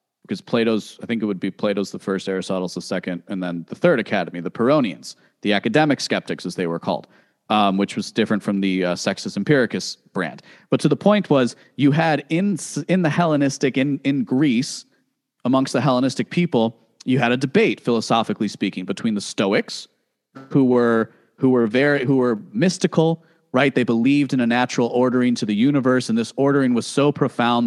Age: 30-49